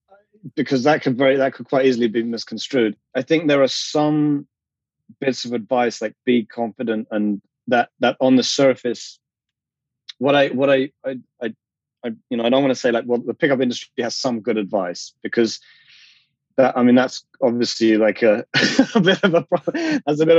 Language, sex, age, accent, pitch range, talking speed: English, male, 30-49, British, 115-140 Hz, 190 wpm